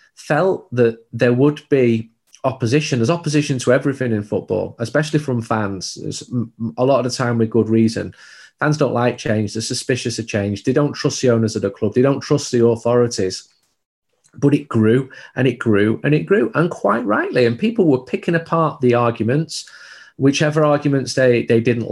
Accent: British